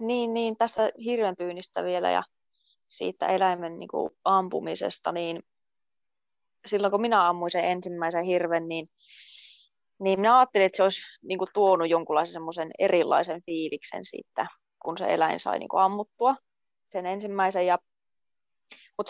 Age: 20-39